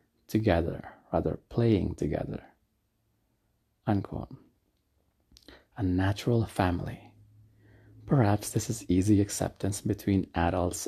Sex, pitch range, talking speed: male, 90-110 Hz, 85 wpm